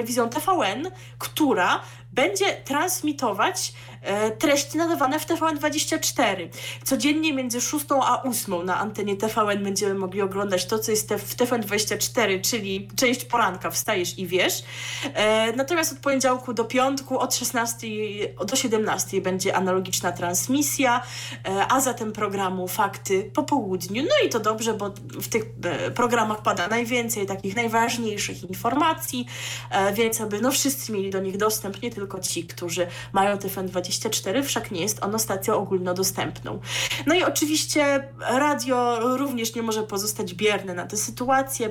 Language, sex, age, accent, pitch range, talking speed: Polish, female, 20-39, native, 195-250 Hz, 135 wpm